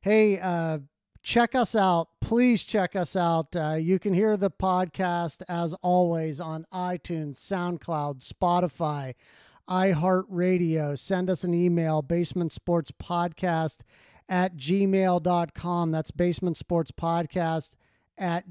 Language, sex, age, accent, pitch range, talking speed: English, male, 40-59, American, 165-190 Hz, 105 wpm